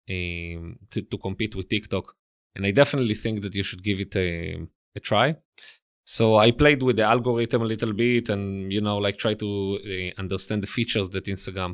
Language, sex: English, male